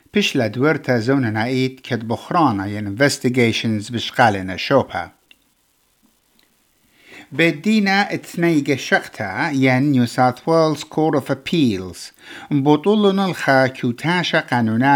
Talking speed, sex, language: 70 wpm, male, English